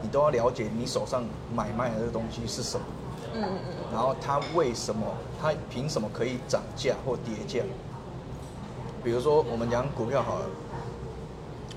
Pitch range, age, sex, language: 120-140 Hz, 20-39, male, Chinese